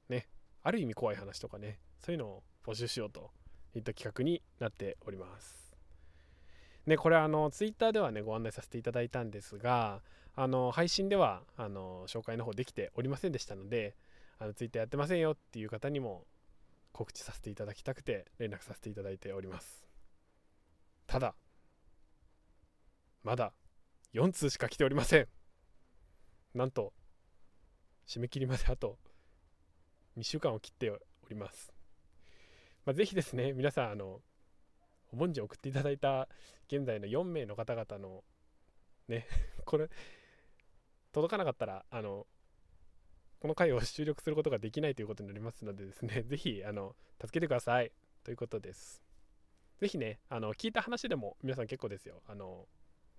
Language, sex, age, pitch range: Japanese, male, 20-39, 85-130 Hz